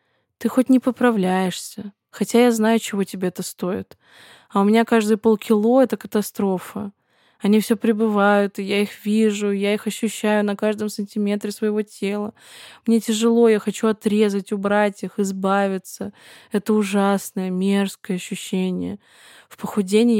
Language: Russian